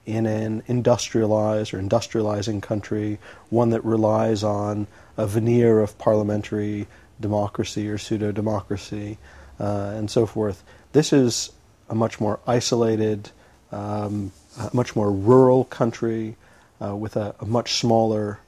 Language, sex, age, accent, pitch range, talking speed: English, male, 40-59, American, 105-120 Hz, 120 wpm